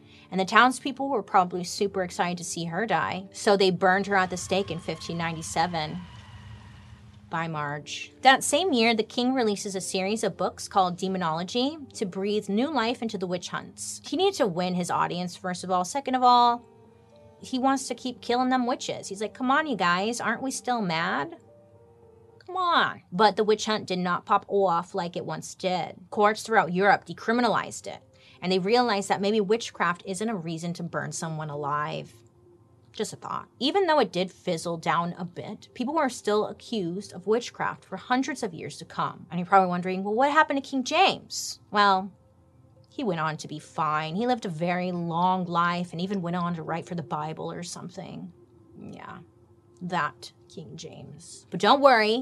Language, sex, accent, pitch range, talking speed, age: English, female, American, 165-225 Hz, 190 wpm, 30-49